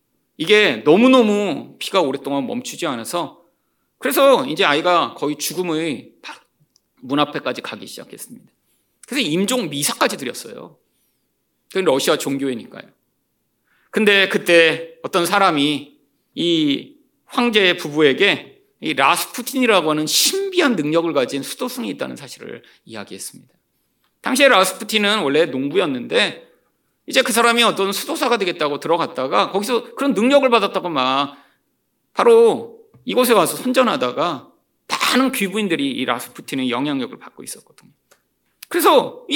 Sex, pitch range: male, 165-260 Hz